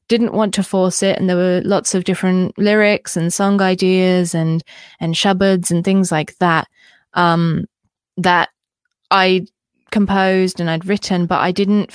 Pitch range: 170-190 Hz